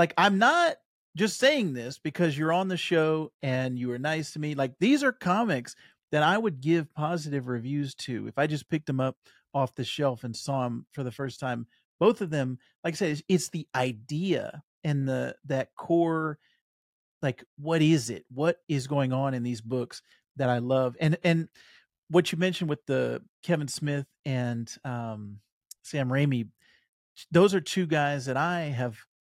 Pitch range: 130-160 Hz